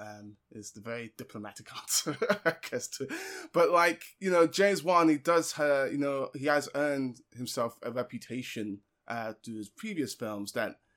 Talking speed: 175 wpm